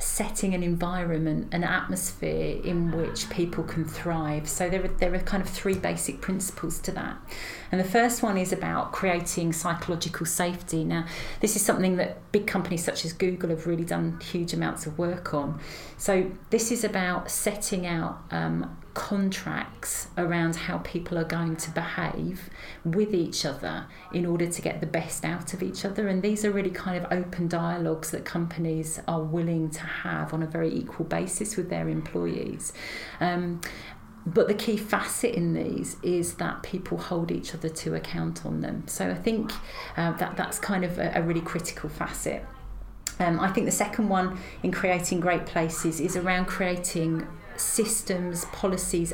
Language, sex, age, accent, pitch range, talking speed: English, female, 40-59, British, 165-190 Hz, 175 wpm